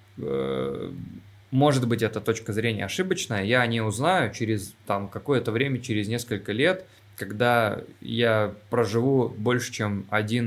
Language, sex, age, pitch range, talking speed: Russian, male, 20-39, 105-125 Hz, 125 wpm